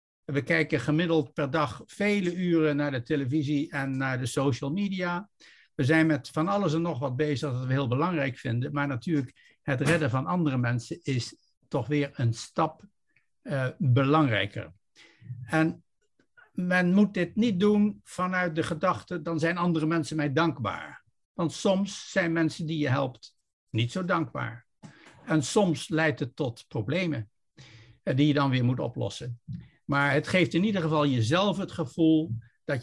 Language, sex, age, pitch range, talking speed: Dutch, male, 60-79, 125-165 Hz, 165 wpm